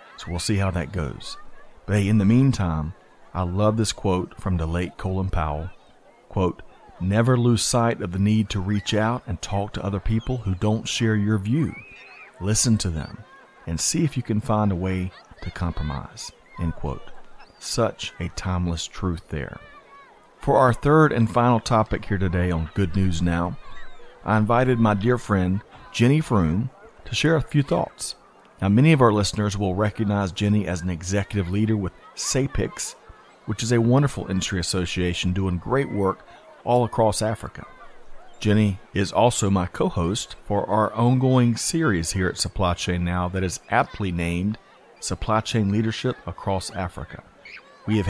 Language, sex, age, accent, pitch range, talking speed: English, male, 40-59, American, 90-115 Hz, 170 wpm